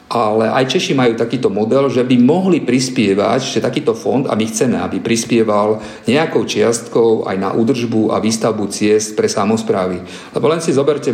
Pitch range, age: 110-130 Hz, 40-59